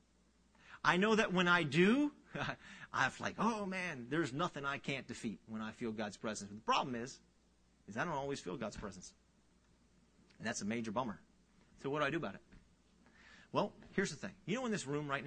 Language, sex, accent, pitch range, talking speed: English, male, American, 115-150 Hz, 205 wpm